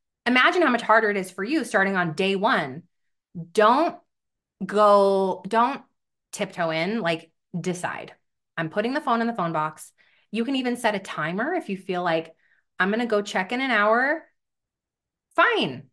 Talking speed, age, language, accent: 175 wpm, 20-39, English, American